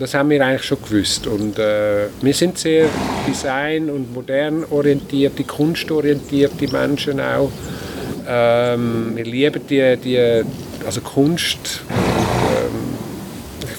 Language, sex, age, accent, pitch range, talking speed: German, male, 50-69, German, 115-145 Hz, 120 wpm